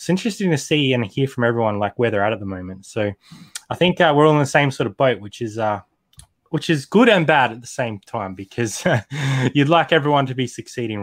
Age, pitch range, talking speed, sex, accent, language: 20-39, 115-150 Hz, 250 wpm, male, Australian, English